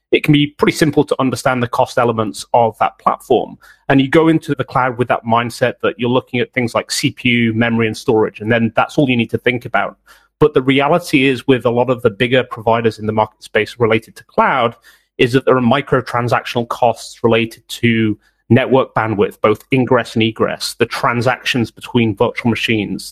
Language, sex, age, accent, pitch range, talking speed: English, male, 30-49, British, 115-135 Hz, 200 wpm